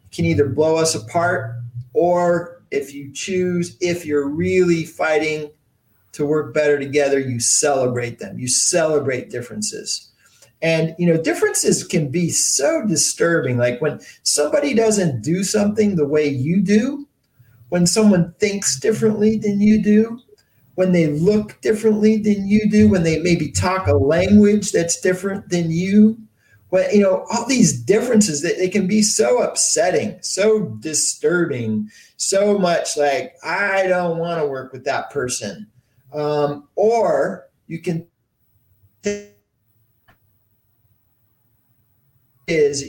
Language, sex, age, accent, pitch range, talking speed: English, male, 40-59, American, 130-185 Hz, 135 wpm